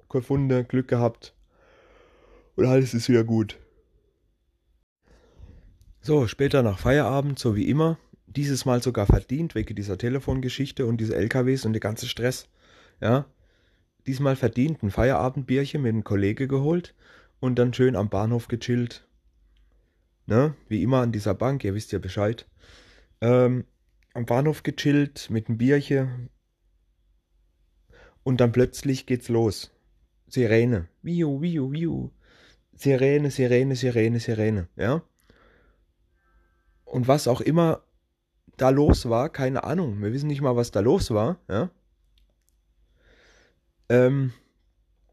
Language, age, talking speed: German, 30-49, 125 wpm